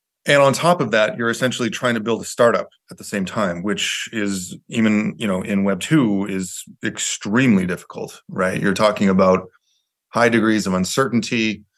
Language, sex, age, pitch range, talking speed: English, male, 30-49, 95-115 Hz, 180 wpm